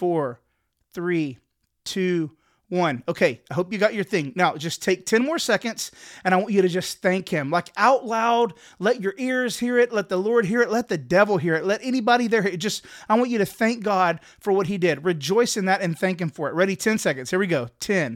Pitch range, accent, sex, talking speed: 165-215 Hz, American, male, 240 wpm